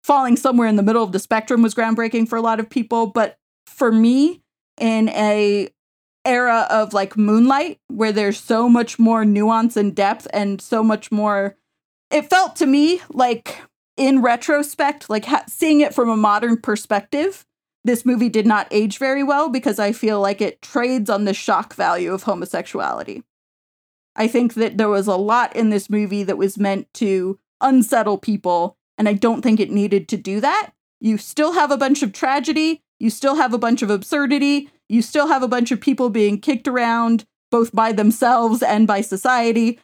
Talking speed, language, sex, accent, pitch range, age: 190 wpm, English, female, American, 210-255 Hz, 30-49